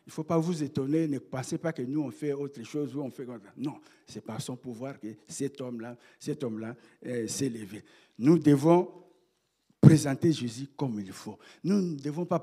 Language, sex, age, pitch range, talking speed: French, male, 60-79, 120-160 Hz, 210 wpm